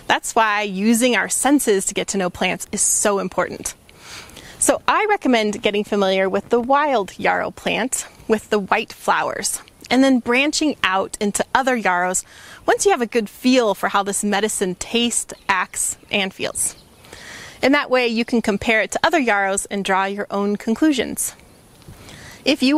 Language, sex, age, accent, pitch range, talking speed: English, female, 30-49, American, 200-260 Hz, 170 wpm